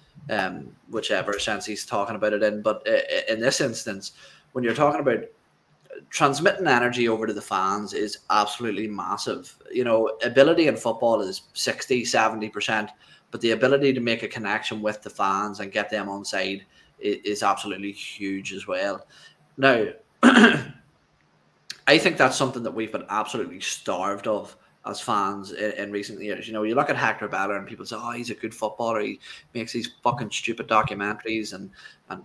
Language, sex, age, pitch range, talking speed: English, male, 20-39, 105-120 Hz, 175 wpm